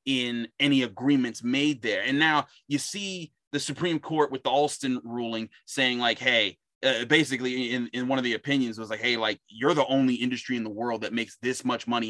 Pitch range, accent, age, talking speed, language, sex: 120-145 Hz, American, 30-49, 215 wpm, English, male